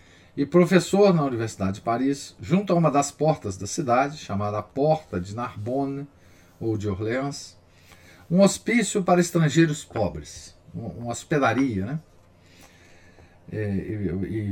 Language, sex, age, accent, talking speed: Portuguese, male, 50-69, Brazilian, 125 wpm